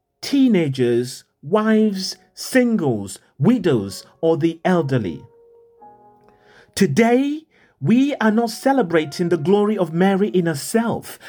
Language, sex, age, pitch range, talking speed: English, male, 40-59, 150-235 Hz, 95 wpm